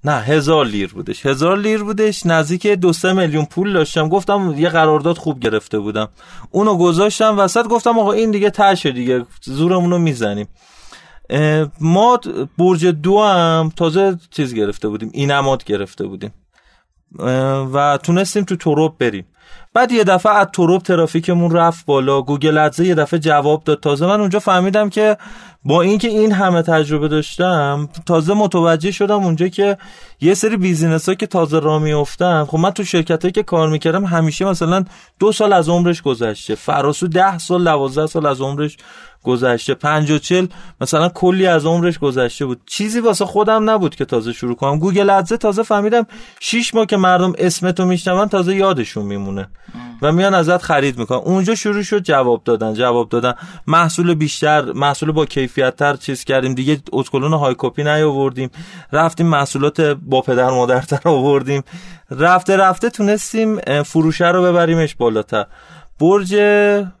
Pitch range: 145-190 Hz